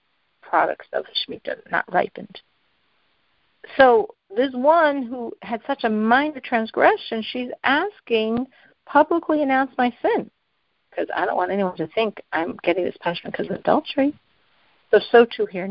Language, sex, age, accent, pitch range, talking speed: English, female, 50-69, American, 205-280 Hz, 150 wpm